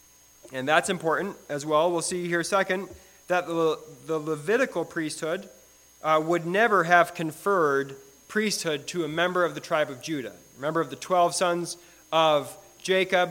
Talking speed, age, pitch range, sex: 165 wpm, 30-49, 155-185 Hz, male